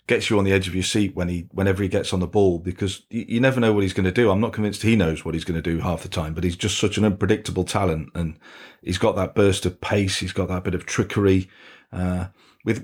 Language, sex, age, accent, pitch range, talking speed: English, male, 40-59, British, 90-105 Hz, 280 wpm